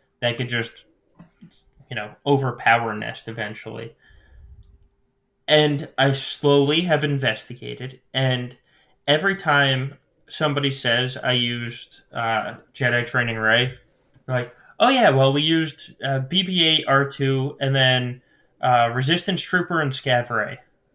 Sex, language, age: male, English, 20-39